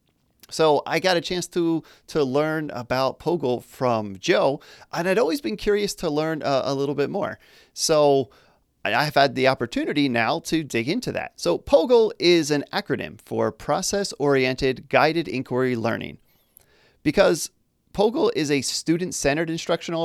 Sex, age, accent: male, 30-49, American